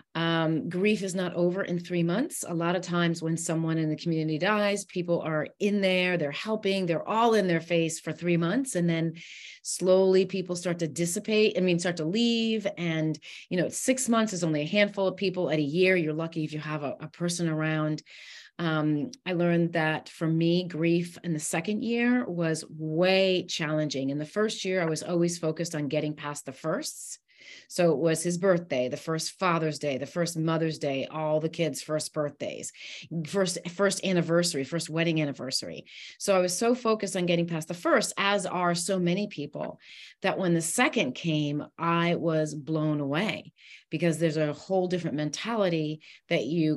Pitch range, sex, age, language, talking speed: 155-190 Hz, female, 30-49, English, 190 wpm